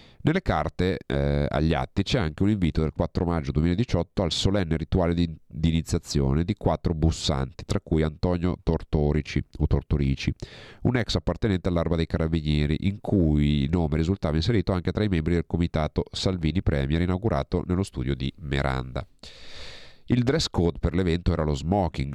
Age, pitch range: 40-59, 75-95 Hz